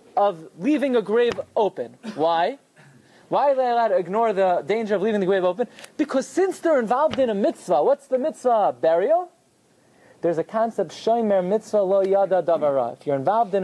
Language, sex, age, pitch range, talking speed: English, male, 30-49, 200-275 Hz, 165 wpm